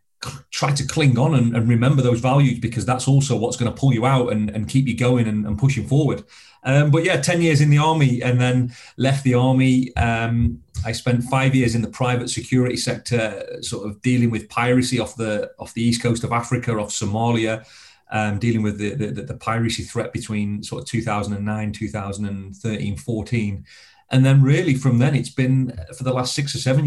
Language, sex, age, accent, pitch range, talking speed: English, male, 30-49, British, 105-130 Hz, 205 wpm